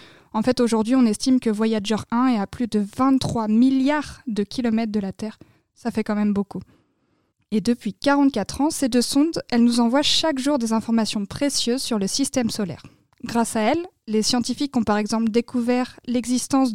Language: French